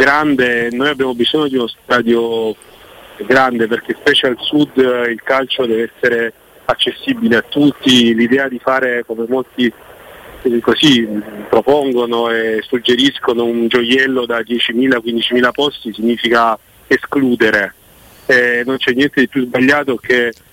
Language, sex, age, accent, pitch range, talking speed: Italian, male, 40-59, native, 115-130 Hz, 125 wpm